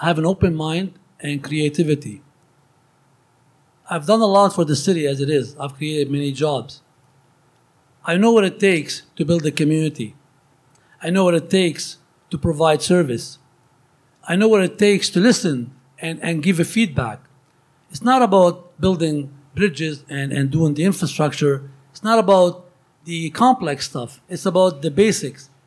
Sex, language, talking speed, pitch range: male, English, 165 wpm, 145-190 Hz